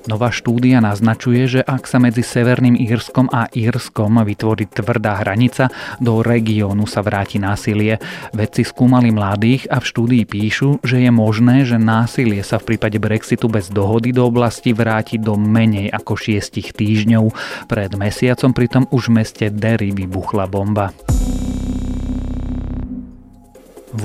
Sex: male